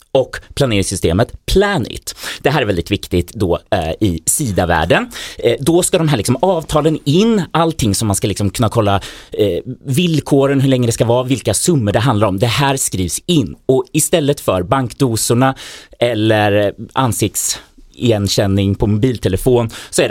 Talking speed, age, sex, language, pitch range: 145 wpm, 30-49, male, Swedish, 100-150 Hz